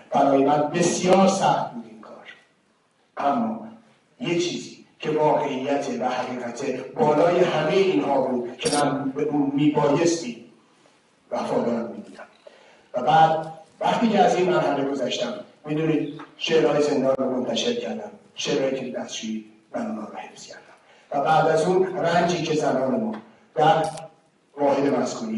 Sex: male